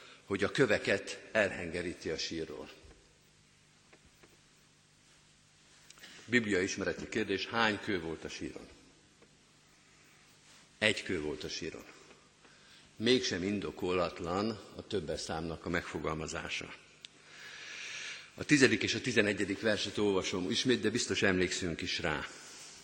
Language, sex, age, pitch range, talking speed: Hungarian, male, 50-69, 100-145 Hz, 100 wpm